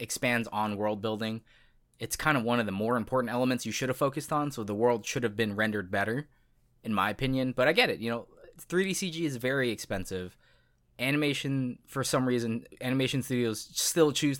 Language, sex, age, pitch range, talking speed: English, male, 20-39, 110-135 Hz, 200 wpm